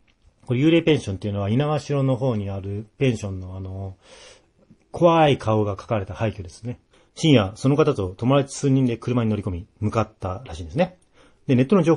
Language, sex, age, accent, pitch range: Japanese, male, 40-59, native, 100-140 Hz